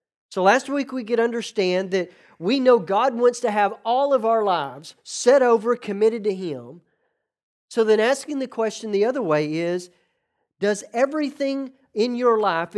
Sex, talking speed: male, 170 wpm